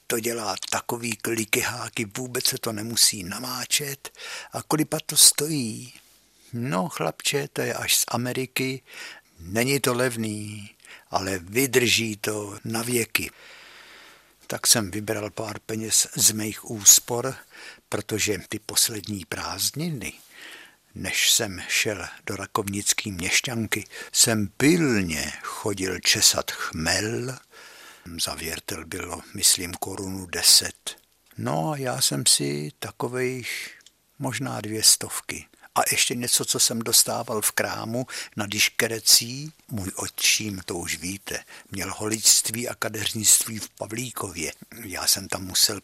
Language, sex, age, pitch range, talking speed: Czech, male, 60-79, 105-125 Hz, 115 wpm